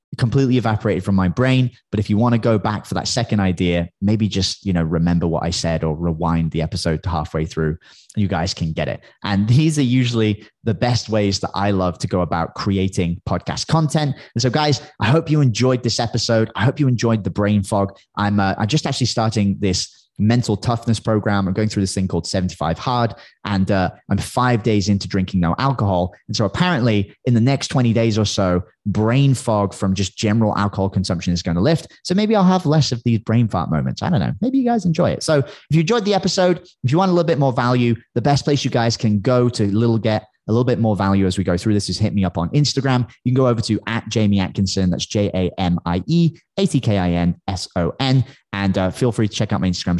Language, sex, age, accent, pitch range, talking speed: English, male, 20-39, British, 95-125 Hz, 230 wpm